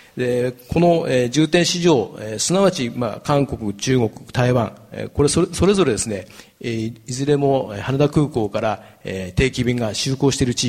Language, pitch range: Japanese, 110-140 Hz